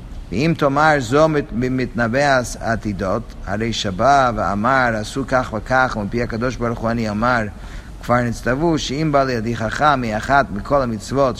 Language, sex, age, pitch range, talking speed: English, male, 50-69, 115-145 Hz, 135 wpm